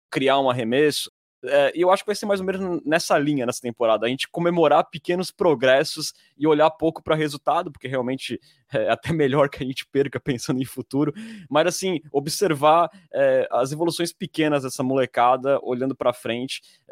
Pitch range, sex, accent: 120-155 Hz, male, Brazilian